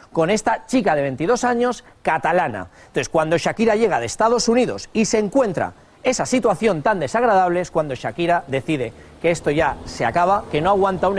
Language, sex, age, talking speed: Spanish, male, 40-59, 180 wpm